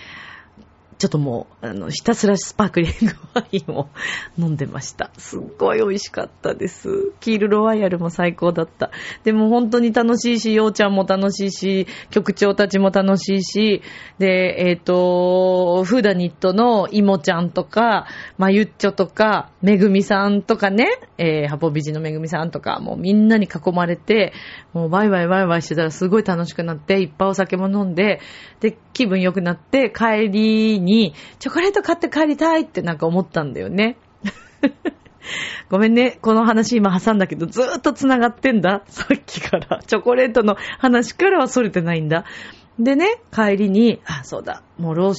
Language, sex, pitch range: Japanese, female, 175-235 Hz